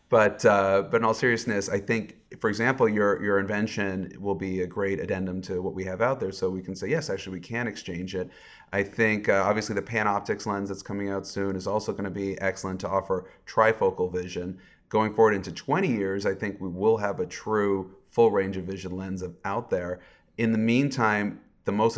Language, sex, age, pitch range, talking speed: English, male, 30-49, 95-110 Hz, 220 wpm